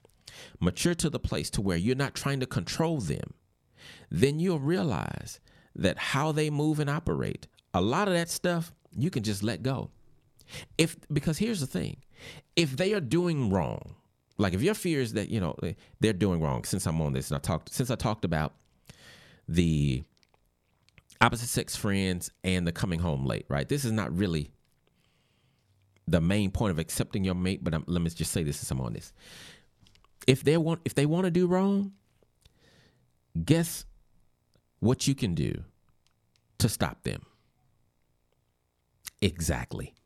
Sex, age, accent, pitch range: male, 40-59, American, 95-155 Hz